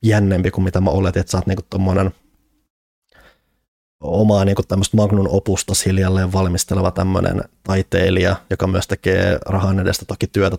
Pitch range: 95-105 Hz